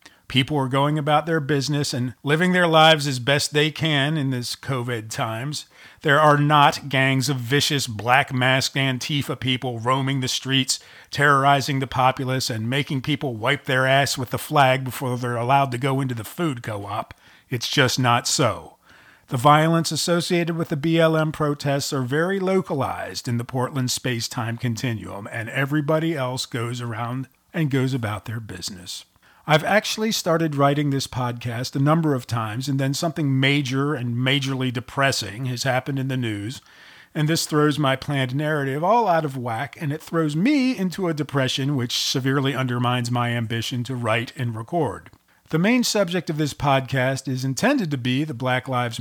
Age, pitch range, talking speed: 40-59, 125-150 Hz, 175 wpm